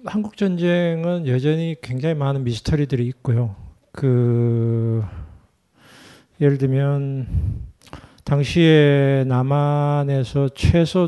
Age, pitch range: 50-69, 110-140 Hz